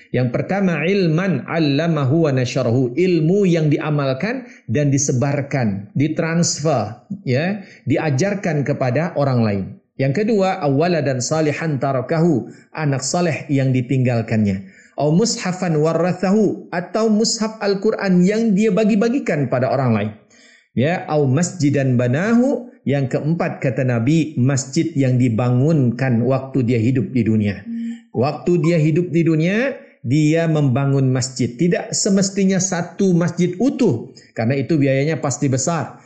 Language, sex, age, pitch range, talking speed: Indonesian, male, 50-69, 130-170 Hz, 120 wpm